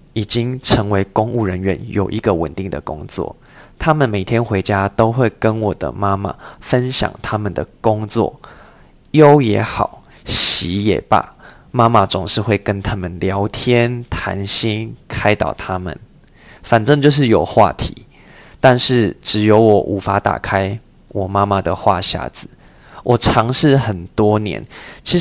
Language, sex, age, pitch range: Chinese, male, 20-39, 100-120 Hz